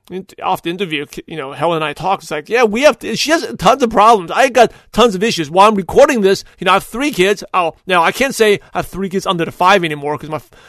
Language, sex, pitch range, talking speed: English, male, 165-215 Hz, 280 wpm